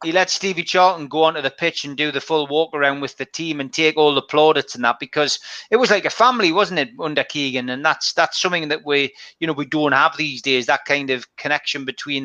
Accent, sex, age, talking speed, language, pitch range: British, male, 30-49, 255 wpm, English, 140-160 Hz